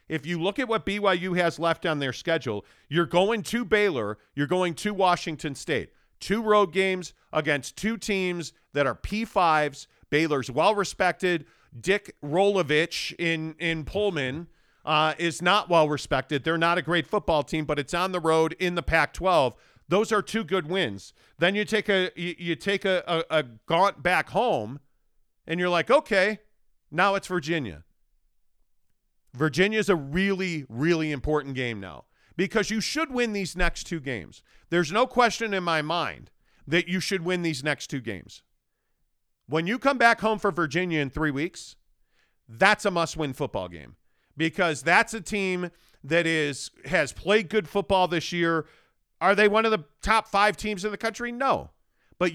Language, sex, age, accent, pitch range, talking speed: English, male, 40-59, American, 155-200 Hz, 170 wpm